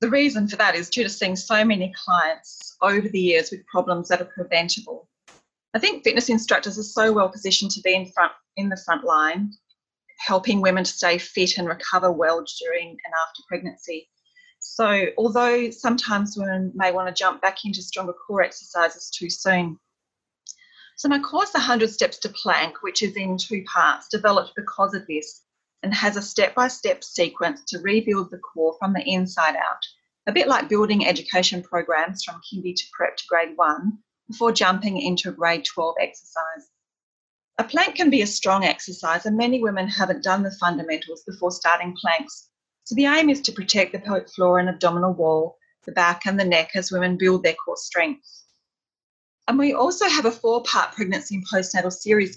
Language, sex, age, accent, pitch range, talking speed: English, female, 30-49, Australian, 180-230 Hz, 185 wpm